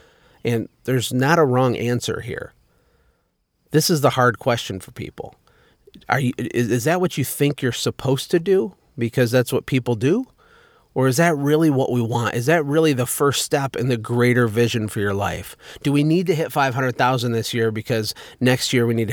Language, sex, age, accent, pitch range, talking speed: English, male, 30-49, American, 115-140 Hz, 200 wpm